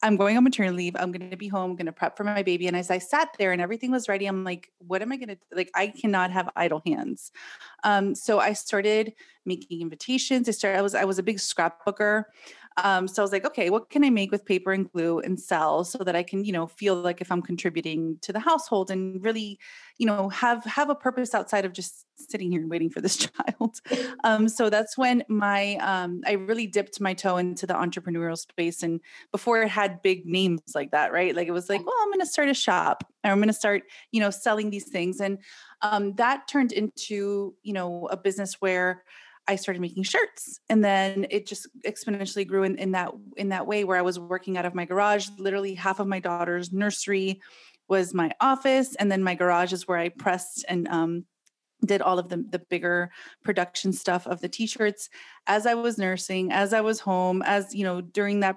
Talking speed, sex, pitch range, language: 225 wpm, female, 185-215 Hz, English